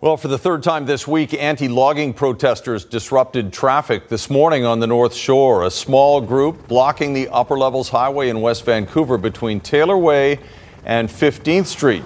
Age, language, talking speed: 50-69, English, 170 wpm